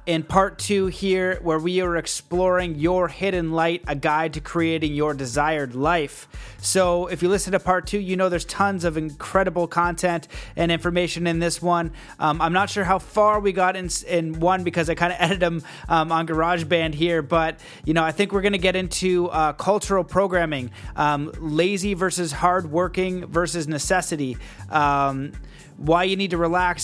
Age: 30-49